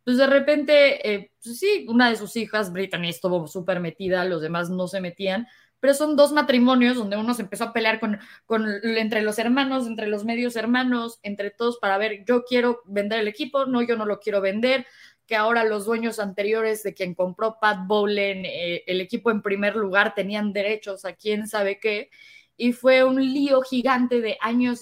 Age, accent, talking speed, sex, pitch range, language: 20-39, Mexican, 200 wpm, female, 195-240 Hz, Spanish